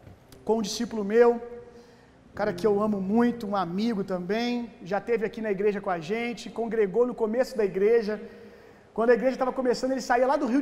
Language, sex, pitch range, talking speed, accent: Gujarati, male, 210-250 Hz, 200 wpm, Brazilian